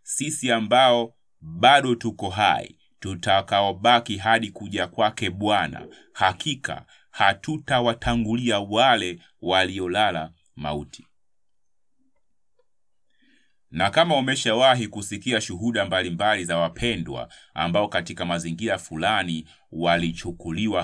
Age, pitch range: 30-49, 85-115 Hz